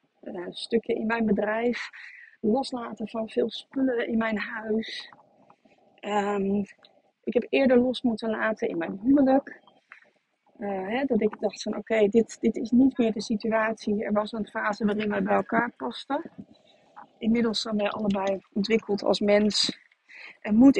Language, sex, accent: Dutch, female, Dutch